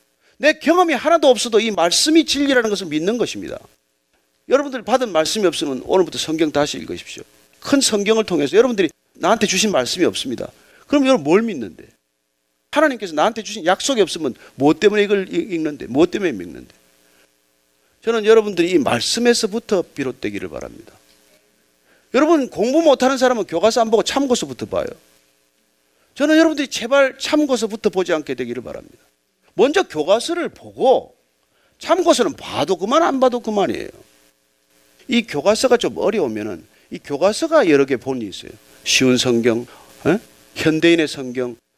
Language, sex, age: Korean, male, 40-59